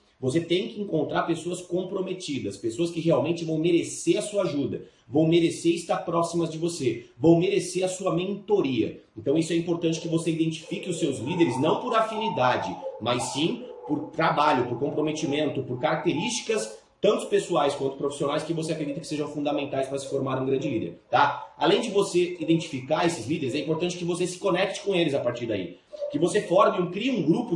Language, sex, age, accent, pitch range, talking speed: Portuguese, male, 30-49, Brazilian, 150-185 Hz, 185 wpm